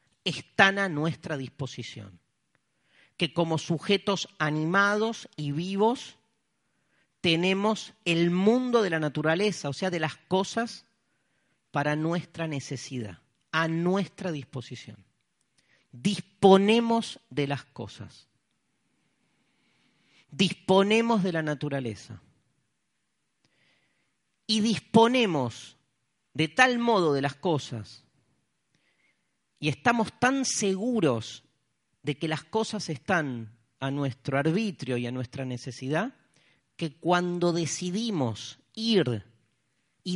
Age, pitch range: 40-59, 145-205 Hz